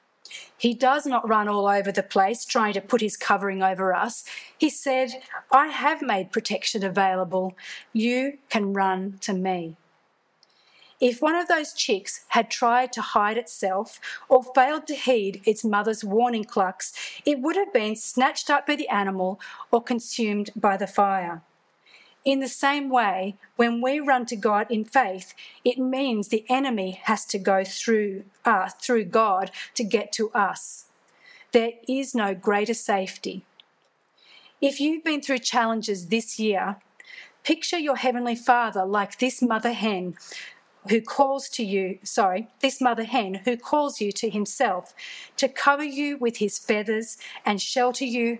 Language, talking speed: English, 155 wpm